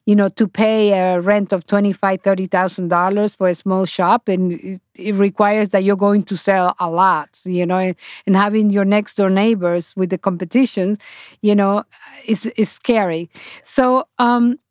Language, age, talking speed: English, 40-59, 165 wpm